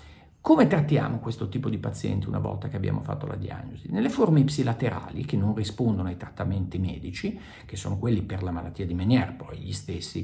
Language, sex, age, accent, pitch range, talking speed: Italian, male, 50-69, native, 105-145 Hz, 195 wpm